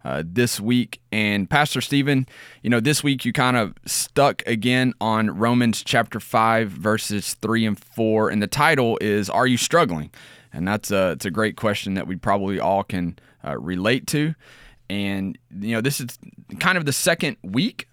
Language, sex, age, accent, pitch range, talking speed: English, male, 20-39, American, 105-130 Hz, 180 wpm